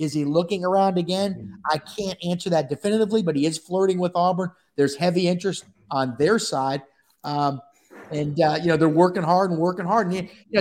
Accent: American